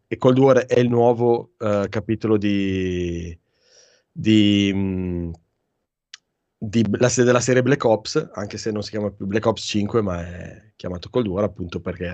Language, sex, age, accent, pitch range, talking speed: Italian, male, 20-39, native, 100-115 Hz, 135 wpm